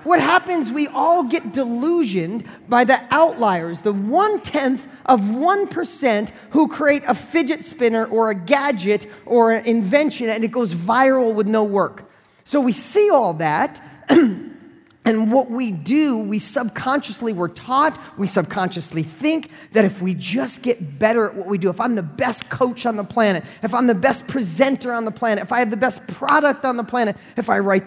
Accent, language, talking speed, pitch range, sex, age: American, English, 185 wpm, 205-275 Hz, male, 40-59